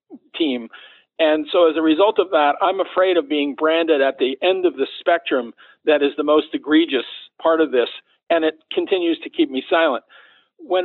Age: 50-69